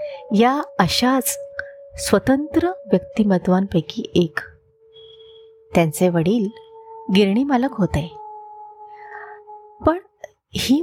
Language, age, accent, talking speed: Marathi, 30-49, native, 65 wpm